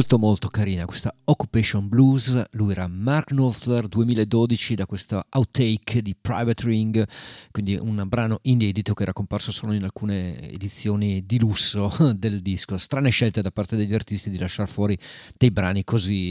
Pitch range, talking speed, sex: 100-125 Hz, 160 wpm, male